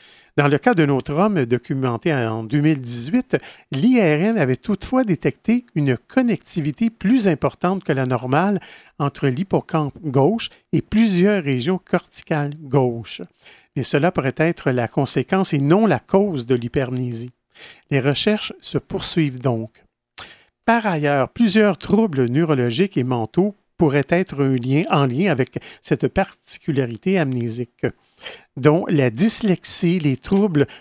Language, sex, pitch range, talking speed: French, male, 135-185 Hz, 125 wpm